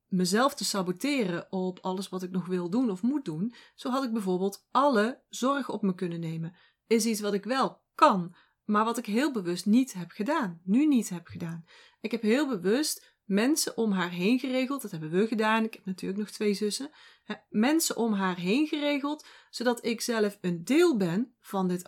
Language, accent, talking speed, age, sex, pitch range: Dutch, Dutch, 200 wpm, 30-49, female, 190-270 Hz